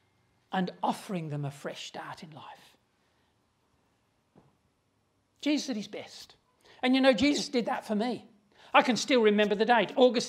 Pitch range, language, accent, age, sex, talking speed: 195-245 Hz, English, British, 50-69, male, 155 wpm